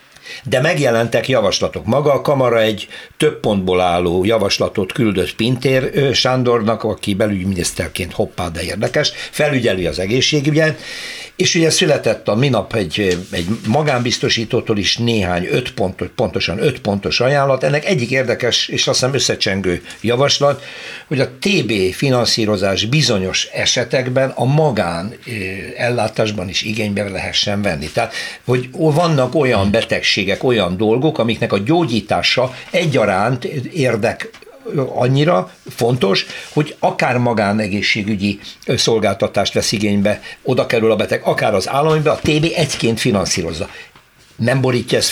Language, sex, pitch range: Hungarian, male, 100-135 Hz